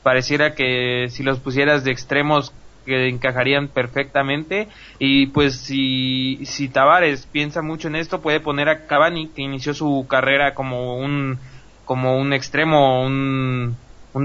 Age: 20-39